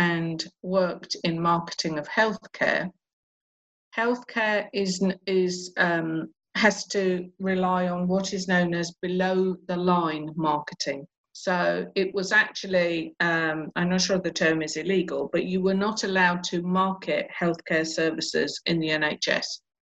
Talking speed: 135 wpm